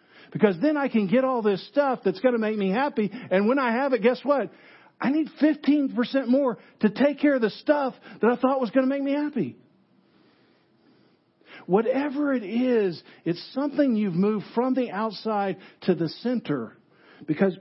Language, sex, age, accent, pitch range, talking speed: English, male, 50-69, American, 160-240 Hz, 185 wpm